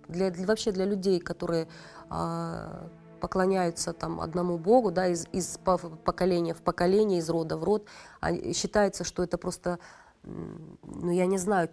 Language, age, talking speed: Russian, 30-49, 150 wpm